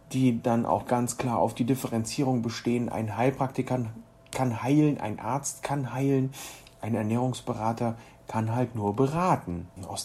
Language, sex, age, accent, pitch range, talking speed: German, male, 40-59, German, 110-140 Hz, 145 wpm